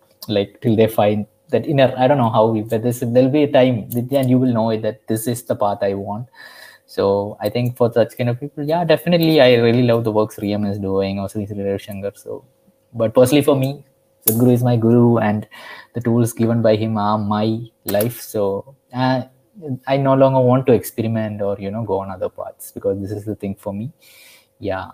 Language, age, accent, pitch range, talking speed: English, 20-39, Indian, 105-130 Hz, 220 wpm